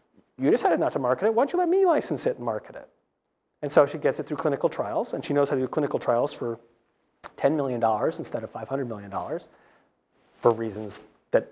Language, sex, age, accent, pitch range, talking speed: English, male, 40-59, American, 130-160 Hz, 235 wpm